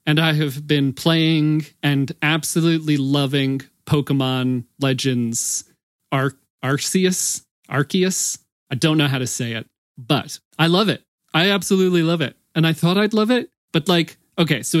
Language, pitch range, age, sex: English, 135-160 Hz, 30-49, male